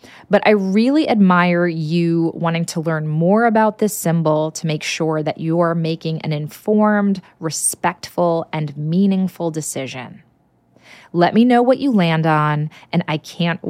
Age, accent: 20-39, American